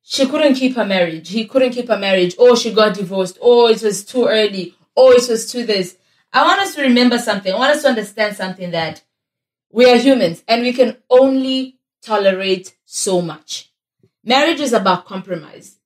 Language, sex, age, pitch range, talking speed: English, female, 20-39, 195-265 Hz, 195 wpm